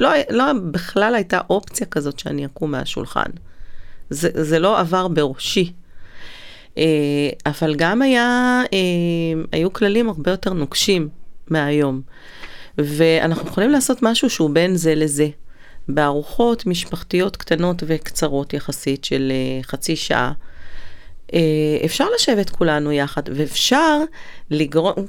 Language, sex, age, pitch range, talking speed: Hebrew, female, 30-49, 155-235 Hz, 115 wpm